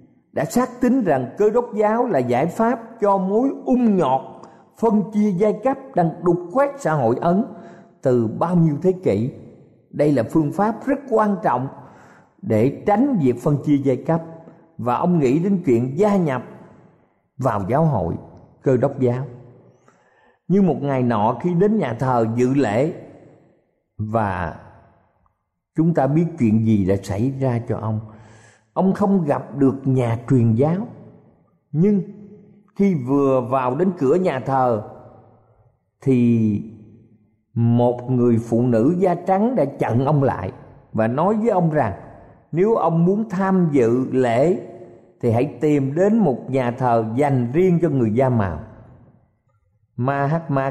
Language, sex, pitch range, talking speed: Vietnamese, male, 115-175 Hz, 150 wpm